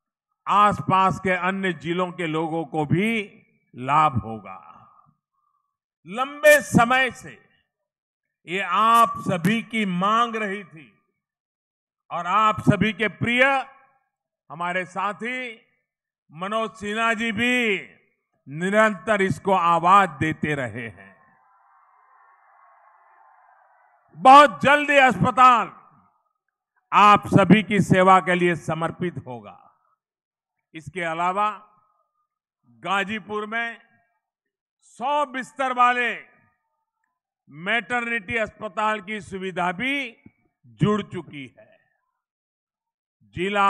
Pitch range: 185-245 Hz